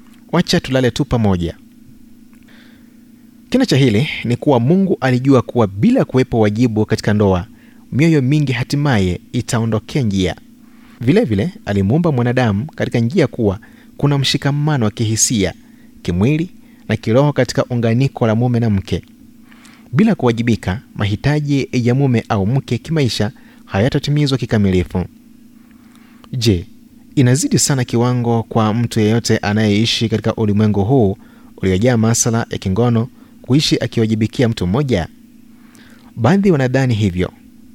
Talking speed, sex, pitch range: 115 wpm, male, 110-170 Hz